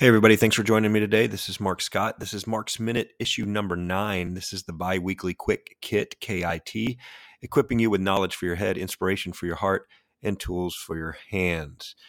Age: 30-49